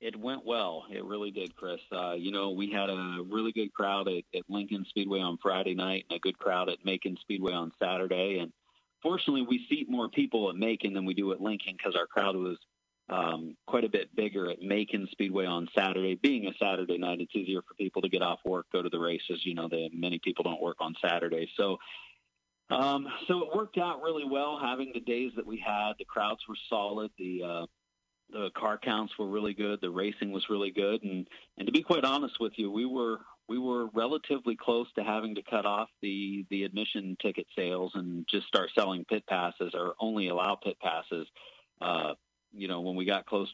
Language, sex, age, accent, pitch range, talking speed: English, male, 40-59, American, 90-110 Hz, 215 wpm